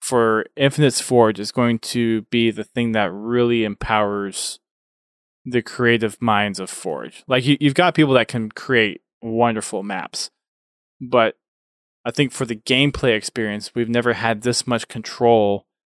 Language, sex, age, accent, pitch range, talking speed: English, male, 20-39, American, 110-130 Hz, 150 wpm